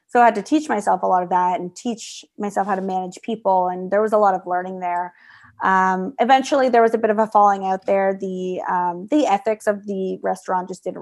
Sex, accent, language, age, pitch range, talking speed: female, American, English, 20-39, 190-230 Hz, 245 wpm